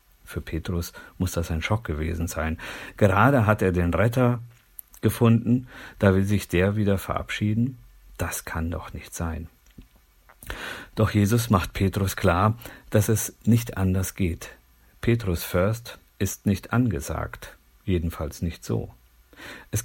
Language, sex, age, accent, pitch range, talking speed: German, male, 50-69, German, 85-110 Hz, 135 wpm